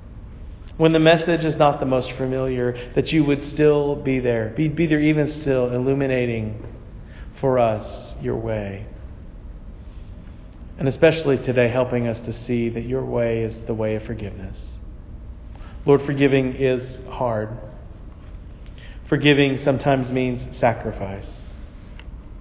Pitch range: 100-130 Hz